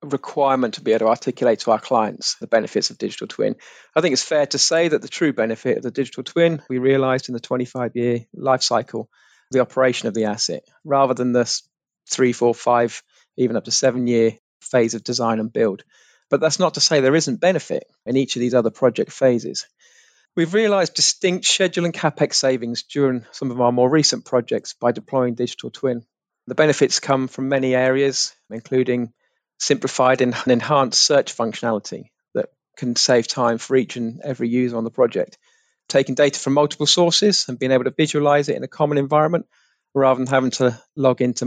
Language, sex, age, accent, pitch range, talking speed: English, male, 40-59, British, 120-150 Hz, 195 wpm